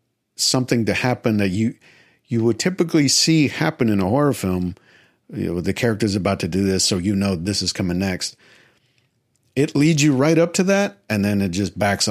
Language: English